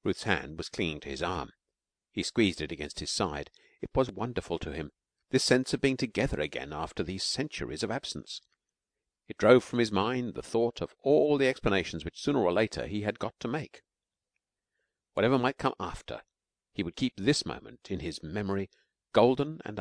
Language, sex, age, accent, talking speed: English, male, 50-69, British, 190 wpm